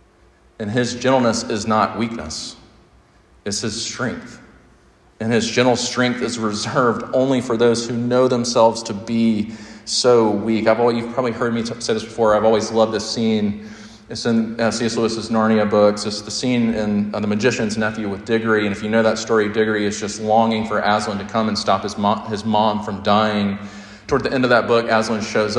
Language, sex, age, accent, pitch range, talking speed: English, male, 40-59, American, 105-120 Hz, 190 wpm